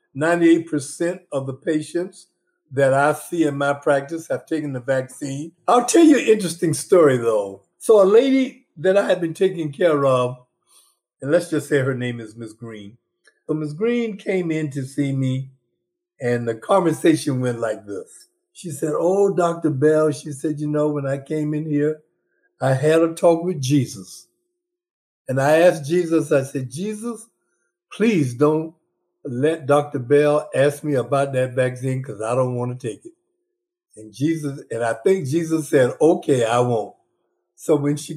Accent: American